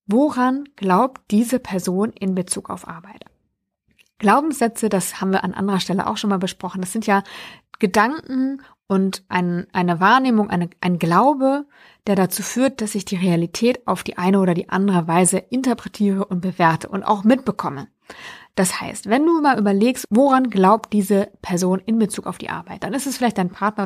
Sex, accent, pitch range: female, German, 185-235 Hz